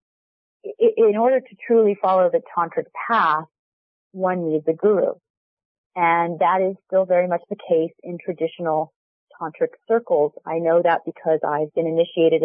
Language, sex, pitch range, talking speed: English, female, 170-220 Hz, 150 wpm